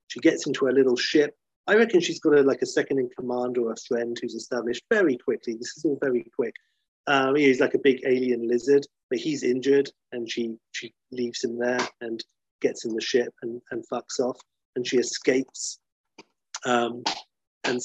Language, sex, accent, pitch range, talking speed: English, male, British, 120-165 Hz, 190 wpm